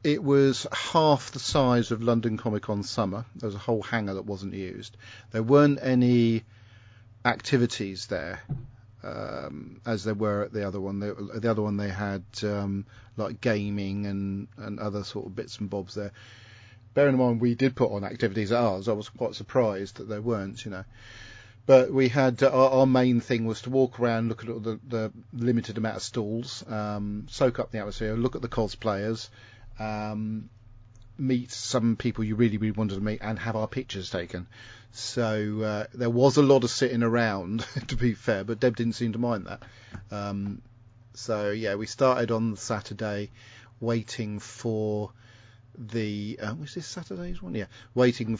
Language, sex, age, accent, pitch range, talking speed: English, male, 40-59, British, 105-120 Hz, 180 wpm